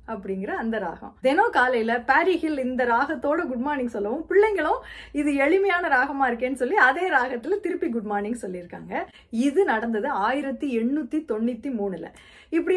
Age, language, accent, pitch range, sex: 30-49, Tamil, native, 235-335 Hz, female